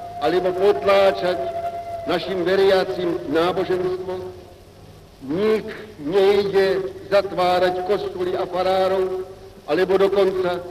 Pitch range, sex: 170-280 Hz, male